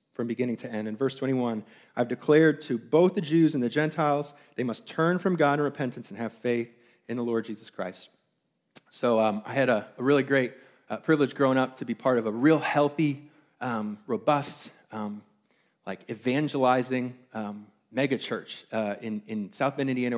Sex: male